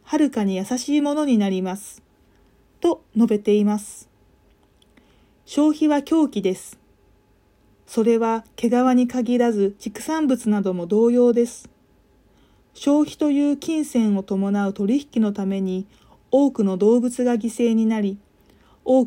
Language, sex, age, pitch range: Japanese, female, 40-59, 215-280 Hz